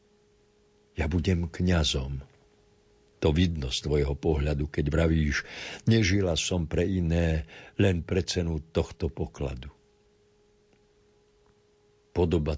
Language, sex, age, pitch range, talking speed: Slovak, male, 60-79, 75-105 Hz, 95 wpm